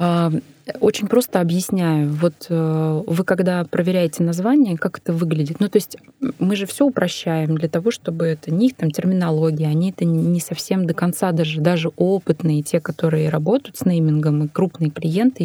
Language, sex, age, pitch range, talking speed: Russian, female, 20-39, 155-195 Hz, 165 wpm